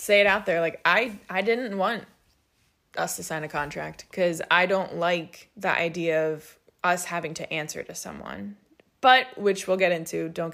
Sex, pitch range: female, 175-205 Hz